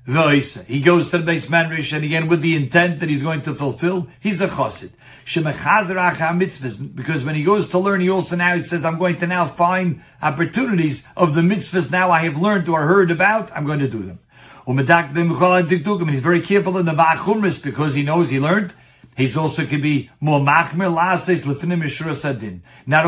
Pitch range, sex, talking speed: 140-180 Hz, male, 170 wpm